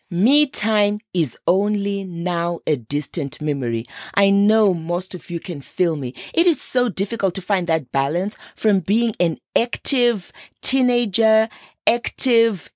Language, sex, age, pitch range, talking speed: English, female, 30-49, 155-230 Hz, 140 wpm